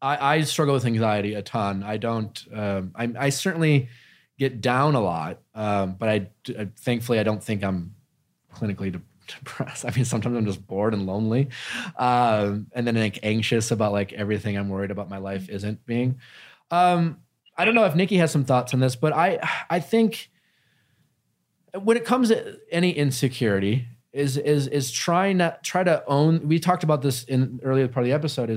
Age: 20-39